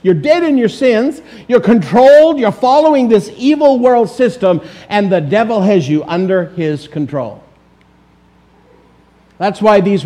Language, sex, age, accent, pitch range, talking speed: English, male, 50-69, American, 155-230 Hz, 145 wpm